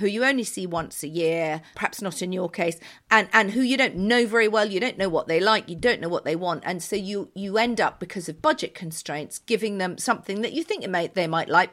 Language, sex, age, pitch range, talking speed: English, female, 40-59, 170-225 Hz, 270 wpm